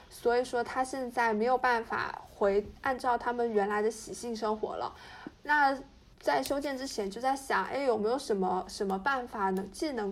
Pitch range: 205-260 Hz